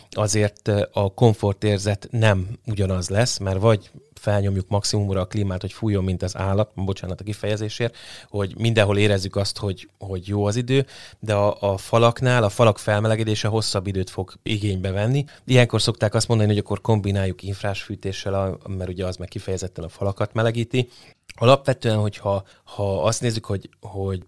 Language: Hungarian